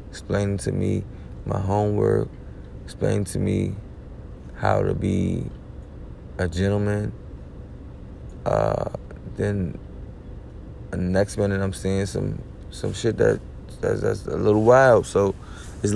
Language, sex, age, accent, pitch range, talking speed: English, male, 20-39, American, 90-105 Hz, 115 wpm